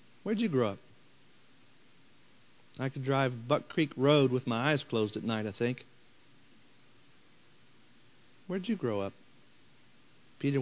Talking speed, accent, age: 140 wpm, American, 40-59